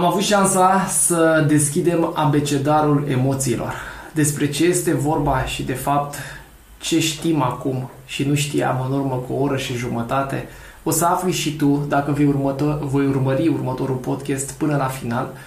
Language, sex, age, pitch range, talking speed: Romanian, male, 20-39, 135-165 Hz, 165 wpm